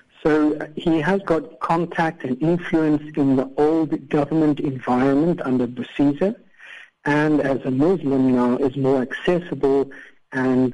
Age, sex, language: 60-79, male, English